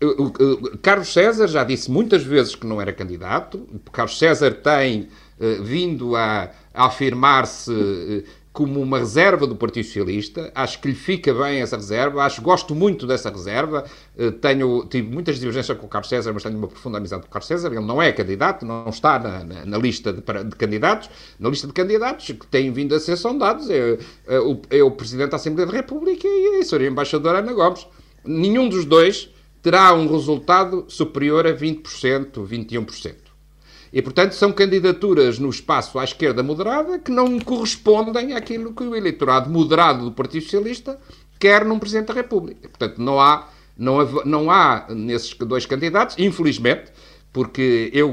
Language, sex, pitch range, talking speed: Portuguese, male, 120-185 Hz, 185 wpm